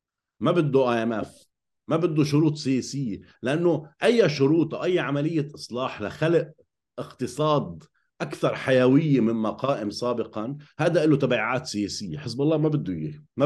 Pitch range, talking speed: 110-155 Hz, 145 wpm